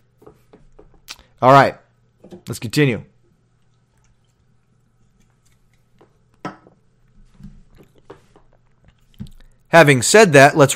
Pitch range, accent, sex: 125-165 Hz, American, male